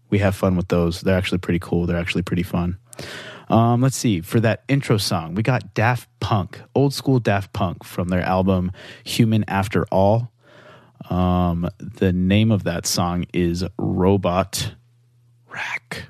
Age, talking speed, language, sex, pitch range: 20-39, 160 wpm, English, male, 90-120 Hz